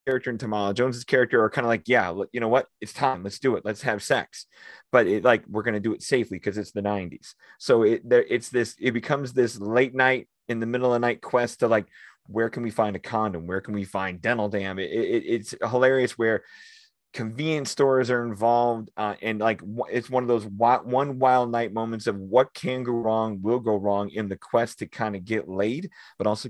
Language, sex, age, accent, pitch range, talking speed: English, male, 30-49, American, 100-125 Hz, 235 wpm